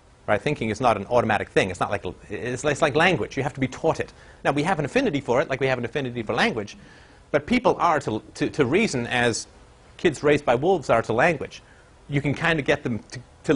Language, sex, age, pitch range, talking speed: English, male, 40-59, 115-155 Hz, 250 wpm